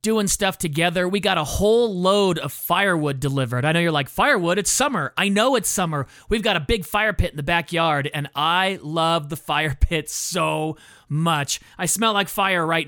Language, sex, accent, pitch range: English, male, American, 140-190 Hz